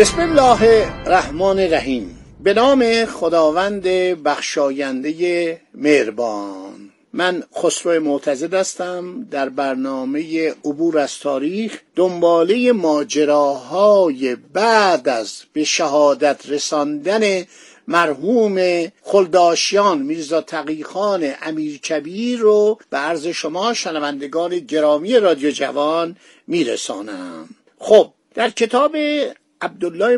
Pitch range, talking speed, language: 155-225 Hz, 90 wpm, Persian